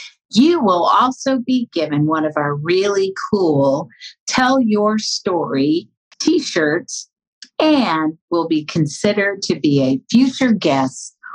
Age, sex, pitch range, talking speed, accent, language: 50-69, female, 155-225 Hz, 120 wpm, American, English